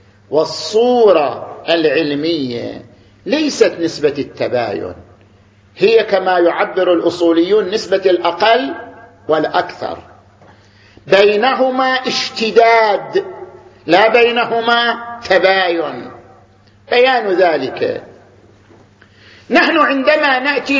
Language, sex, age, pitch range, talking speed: Arabic, male, 50-69, 200-275 Hz, 65 wpm